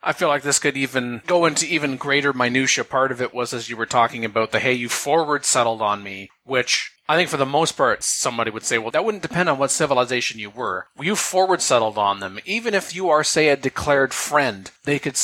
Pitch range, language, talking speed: 120-145 Hz, English, 230 wpm